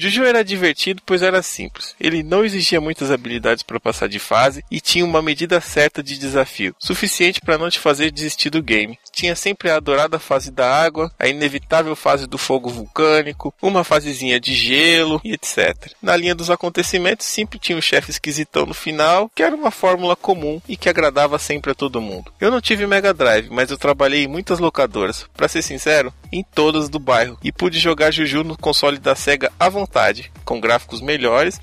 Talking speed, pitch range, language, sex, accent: 195 wpm, 145-180 Hz, English, male, Brazilian